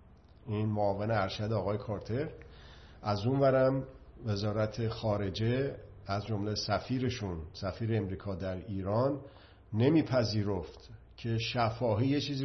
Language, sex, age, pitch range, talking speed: Persian, male, 50-69, 105-125 Hz, 100 wpm